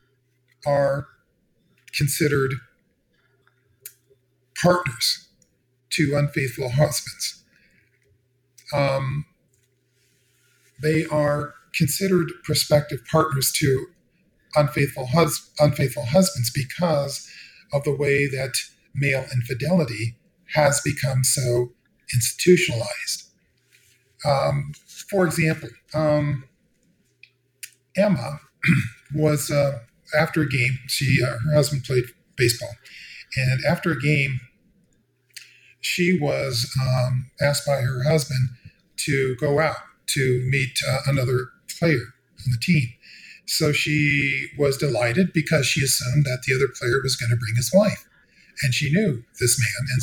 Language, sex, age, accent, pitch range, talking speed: English, male, 40-59, American, 130-150 Hz, 105 wpm